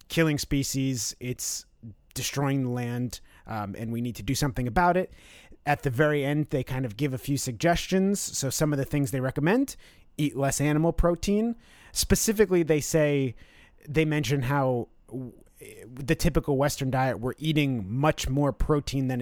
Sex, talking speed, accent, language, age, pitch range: male, 165 wpm, American, English, 30-49, 130-170 Hz